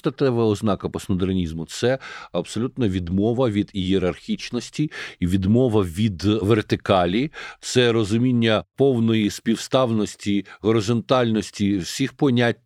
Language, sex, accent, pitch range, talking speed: Ukrainian, male, native, 105-125 Hz, 90 wpm